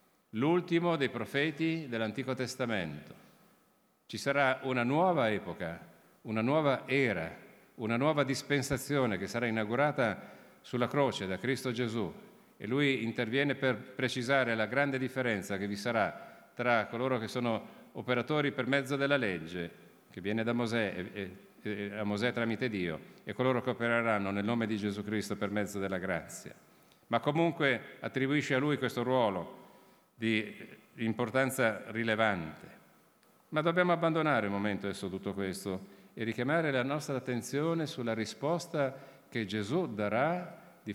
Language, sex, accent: Italian, male, native